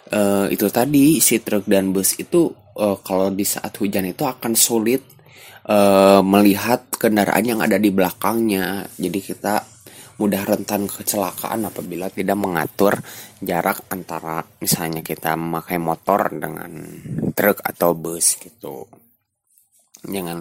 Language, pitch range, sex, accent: Indonesian, 90-110 Hz, male, native